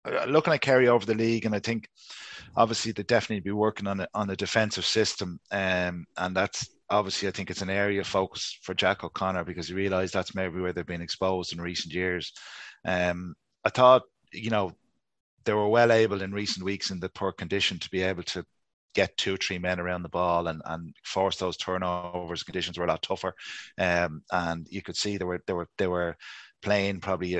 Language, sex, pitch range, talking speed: English, male, 90-100 Hz, 210 wpm